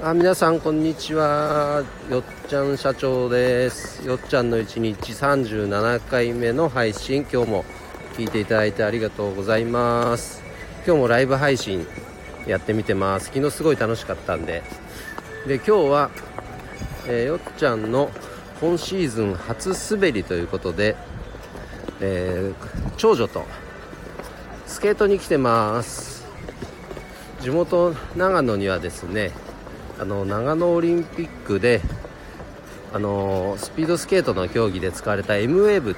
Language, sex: Japanese, male